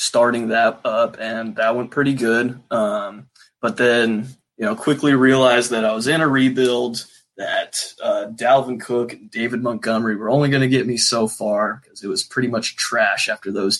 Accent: American